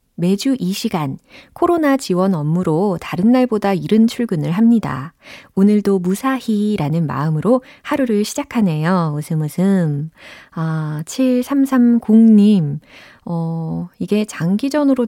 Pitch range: 160-240 Hz